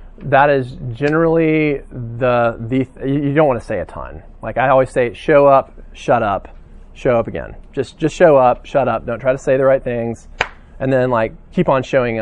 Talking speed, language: 205 wpm, English